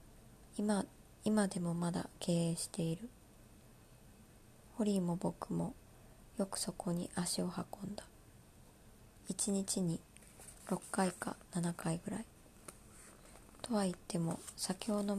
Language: Japanese